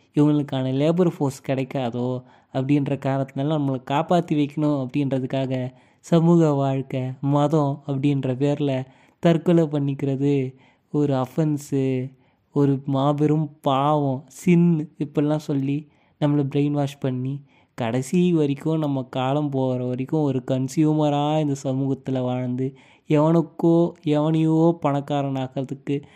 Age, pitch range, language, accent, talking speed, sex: 20-39, 135-155 Hz, Tamil, native, 100 wpm, male